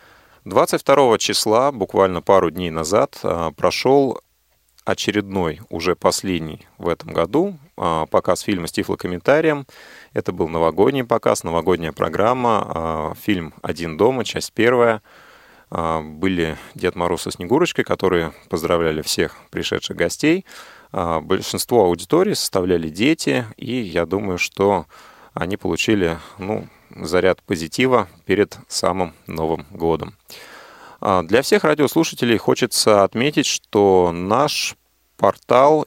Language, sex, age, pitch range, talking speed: Russian, male, 30-49, 85-115 Hz, 105 wpm